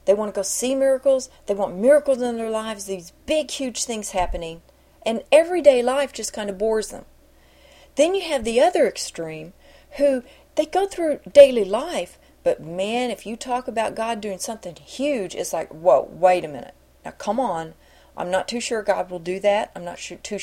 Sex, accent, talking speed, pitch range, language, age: female, American, 195 wpm, 185-245 Hz, English, 40-59